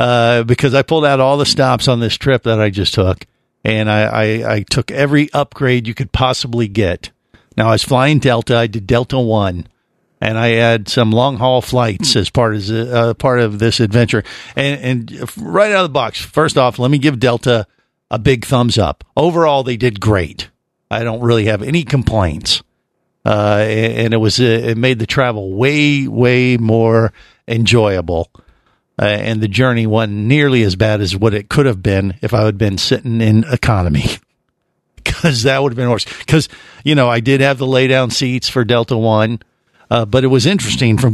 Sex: male